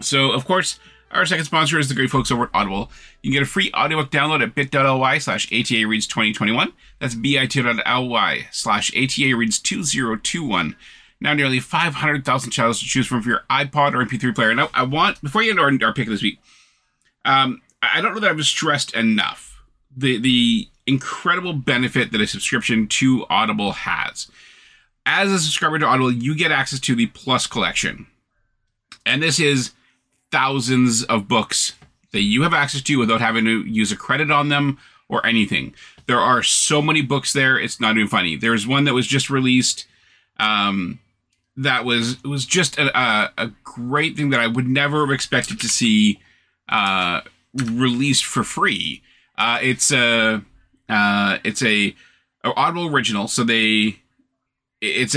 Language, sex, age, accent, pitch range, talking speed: English, male, 30-49, American, 120-145 Hz, 170 wpm